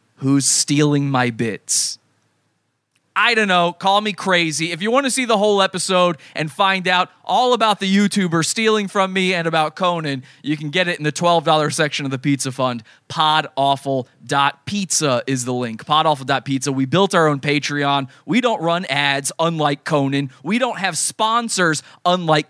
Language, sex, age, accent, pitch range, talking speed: English, male, 20-39, American, 135-175 Hz, 170 wpm